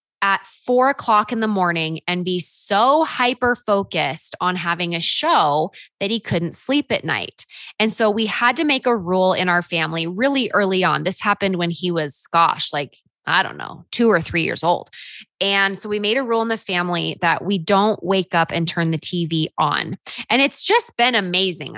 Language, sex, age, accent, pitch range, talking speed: English, female, 20-39, American, 170-240 Hz, 200 wpm